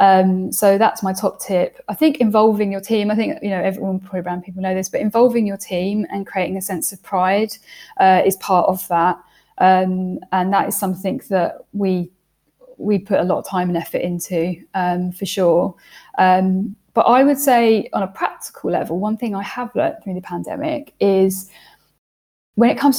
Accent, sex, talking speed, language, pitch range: British, female, 200 wpm, English, 185-225 Hz